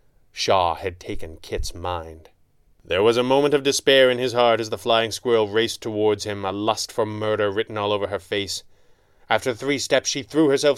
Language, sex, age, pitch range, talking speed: English, male, 30-49, 100-120 Hz, 200 wpm